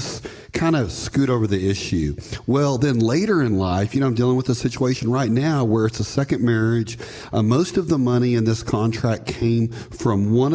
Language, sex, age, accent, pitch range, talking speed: English, male, 40-59, American, 105-135 Hz, 205 wpm